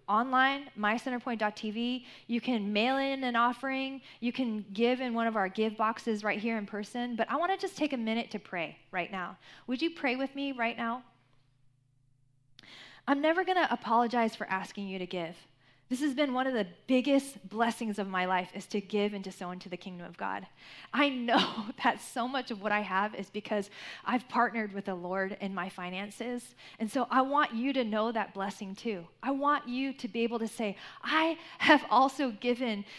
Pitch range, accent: 200-255 Hz, American